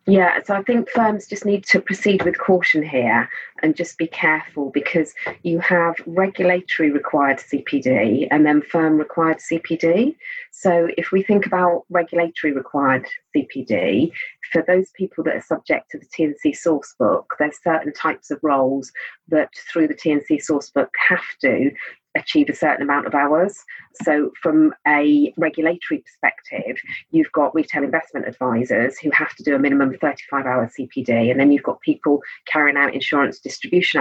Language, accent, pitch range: English, British, 150-200 Hz